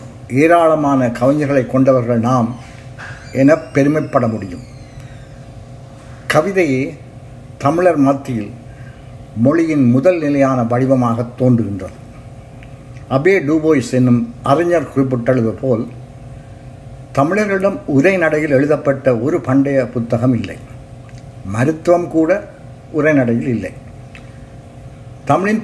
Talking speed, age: 75 wpm, 60-79